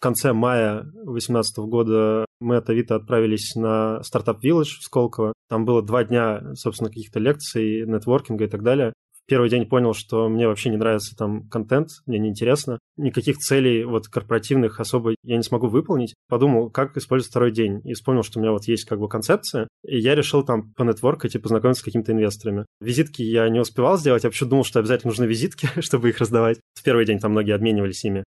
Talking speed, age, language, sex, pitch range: 195 wpm, 20-39, Russian, male, 110-130 Hz